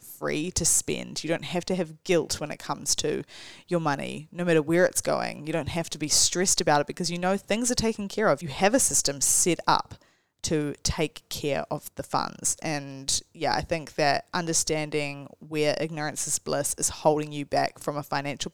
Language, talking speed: English, 210 wpm